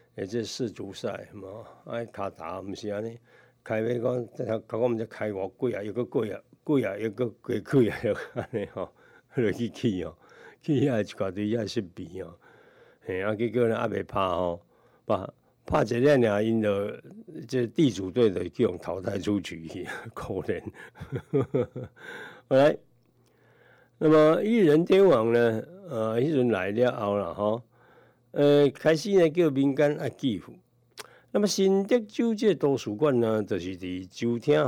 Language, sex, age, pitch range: Chinese, male, 60-79, 105-130 Hz